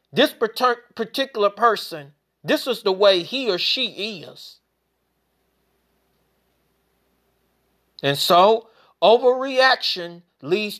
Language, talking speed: English, 85 wpm